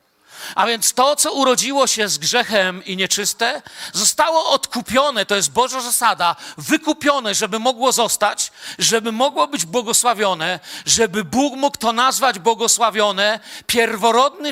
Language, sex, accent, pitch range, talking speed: Polish, male, native, 205-260 Hz, 130 wpm